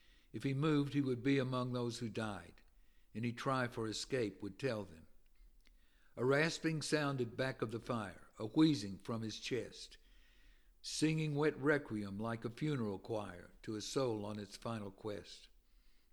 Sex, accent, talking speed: male, American, 160 wpm